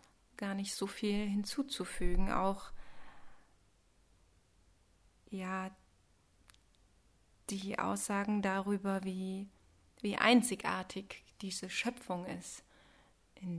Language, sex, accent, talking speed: German, female, German, 75 wpm